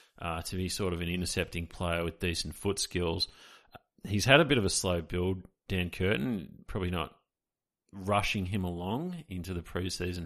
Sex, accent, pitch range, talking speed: male, Australian, 85-95 Hz, 175 wpm